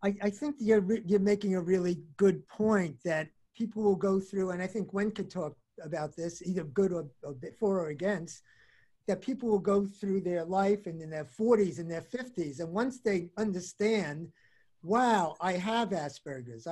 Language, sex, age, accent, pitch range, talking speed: English, male, 50-69, American, 180-230 Hz, 185 wpm